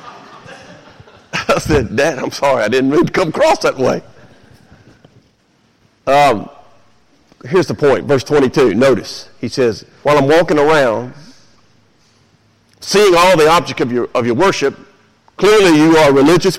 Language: English